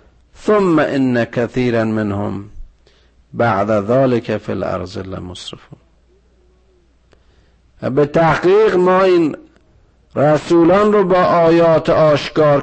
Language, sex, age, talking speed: Persian, male, 50-69, 85 wpm